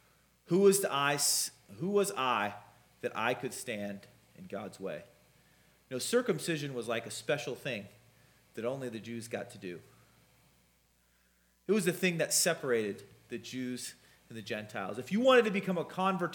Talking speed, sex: 175 wpm, male